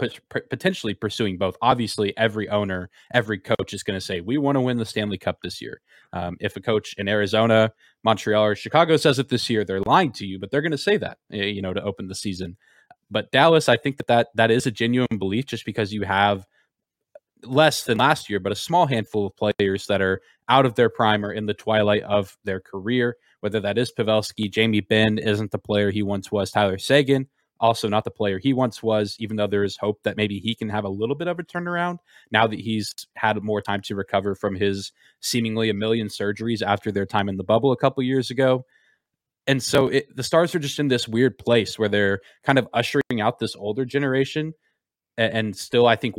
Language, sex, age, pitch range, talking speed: English, male, 20-39, 100-120 Hz, 225 wpm